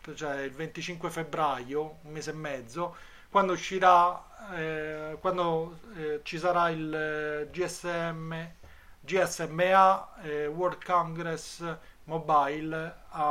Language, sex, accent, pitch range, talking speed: Italian, male, native, 140-175 Hz, 105 wpm